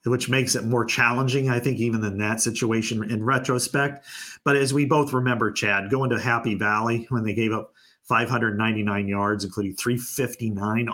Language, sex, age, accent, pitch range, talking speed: English, male, 40-59, American, 110-135 Hz, 170 wpm